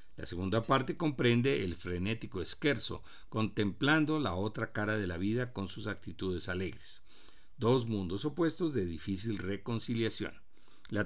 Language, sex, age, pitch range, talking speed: Spanish, male, 50-69, 100-135 Hz, 135 wpm